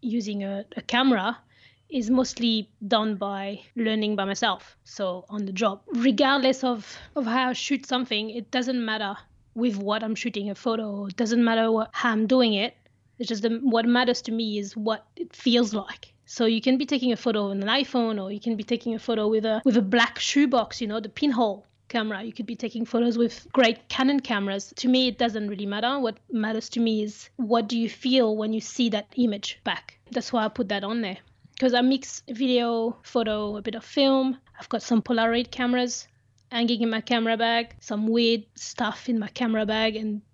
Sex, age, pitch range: female, 20-39, 220-250 Hz